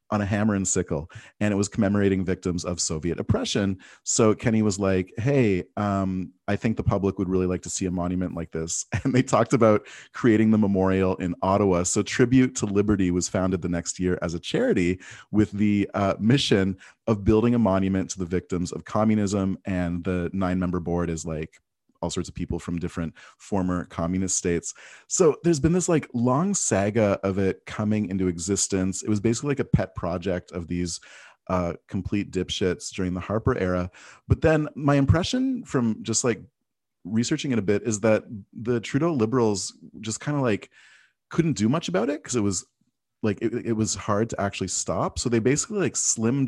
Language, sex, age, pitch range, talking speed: English, male, 30-49, 90-115 Hz, 195 wpm